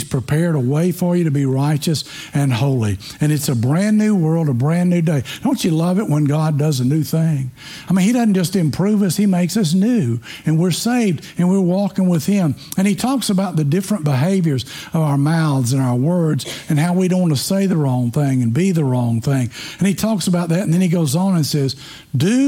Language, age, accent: English, 60-79, American